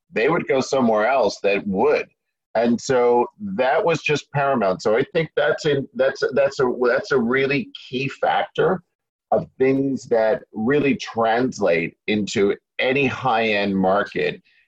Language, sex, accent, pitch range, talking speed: English, male, American, 105-135 Hz, 140 wpm